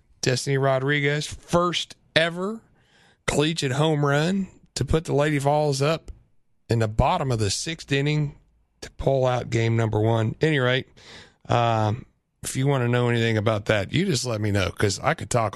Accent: American